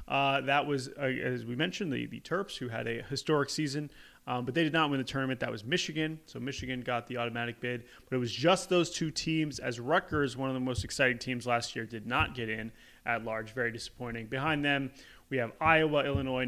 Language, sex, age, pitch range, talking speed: English, male, 30-49, 125-155 Hz, 230 wpm